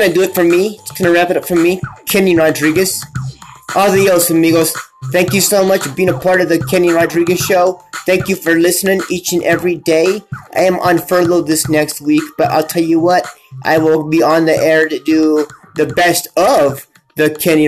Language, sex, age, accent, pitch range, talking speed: English, male, 30-49, American, 155-175 Hz, 210 wpm